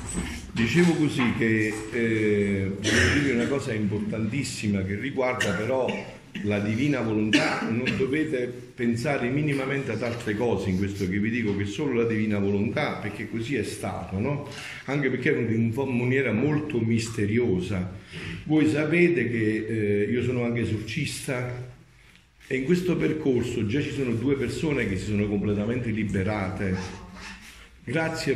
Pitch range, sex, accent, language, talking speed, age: 105-135 Hz, male, native, Italian, 140 wpm, 50-69